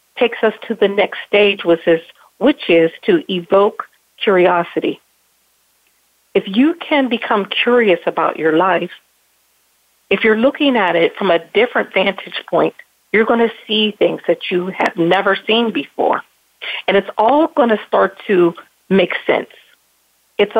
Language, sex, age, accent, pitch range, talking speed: English, female, 50-69, American, 185-240 Hz, 150 wpm